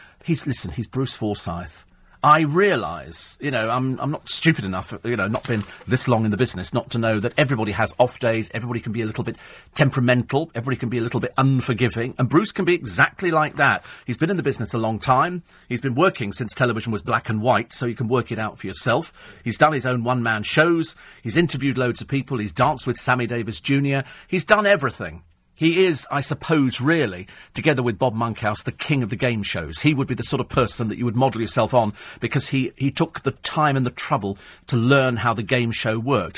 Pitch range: 115-140 Hz